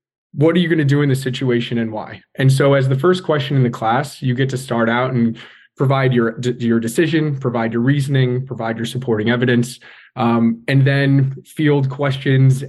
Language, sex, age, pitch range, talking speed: English, male, 20-39, 120-140 Hz, 200 wpm